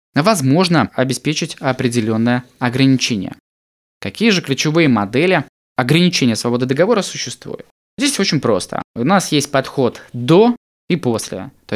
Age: 20-39